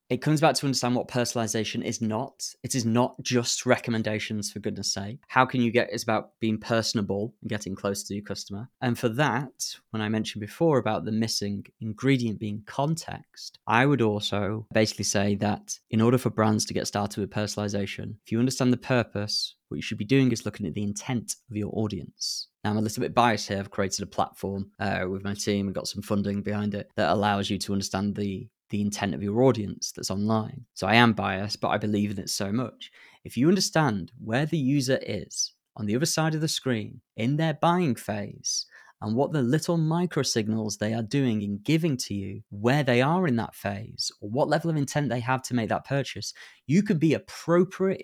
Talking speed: 220 wpm